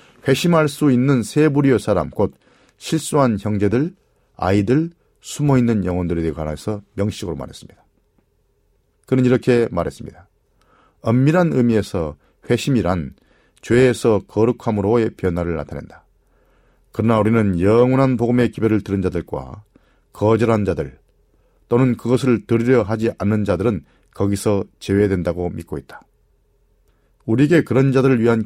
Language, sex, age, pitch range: Korean, male, 40-59, 100-130 Hz